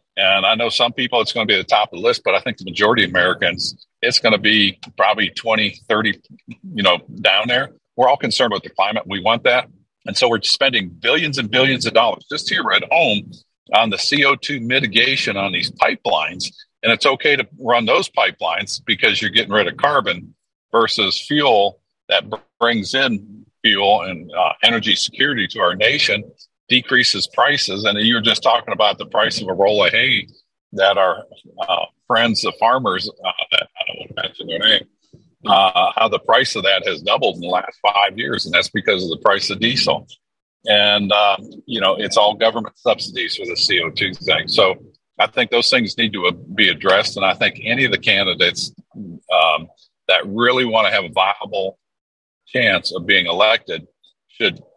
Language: English